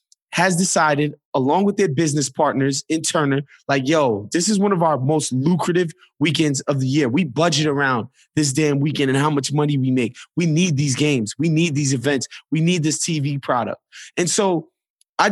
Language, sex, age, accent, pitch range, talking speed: English, male, 20-39, American, 140-170 Hz, 195 wpm